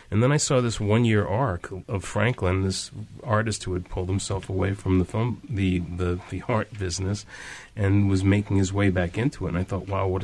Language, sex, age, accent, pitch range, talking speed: English, male, 30-49, American, 90-105 Hz, 210 wpm